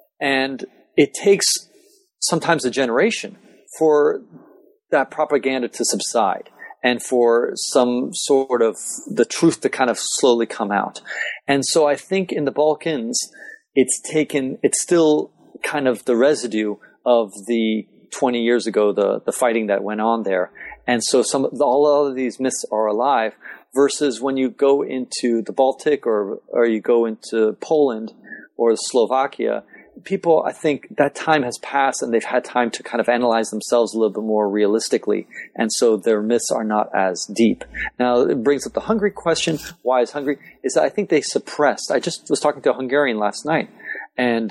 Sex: male